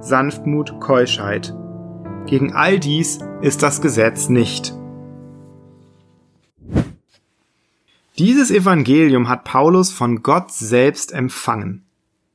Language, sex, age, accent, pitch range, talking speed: German, male, 30-49, German, 125-170 Hz, 85 wpm